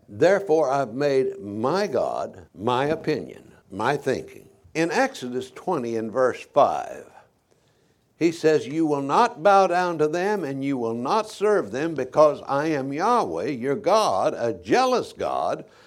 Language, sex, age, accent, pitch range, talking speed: English, male, 60-79, American, 145-215 Hz, 150 wpm